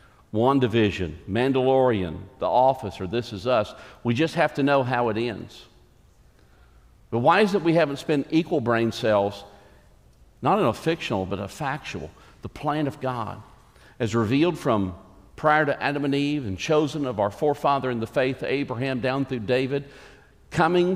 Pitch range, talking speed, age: 105-140 Hz, 170 wpm, 50-69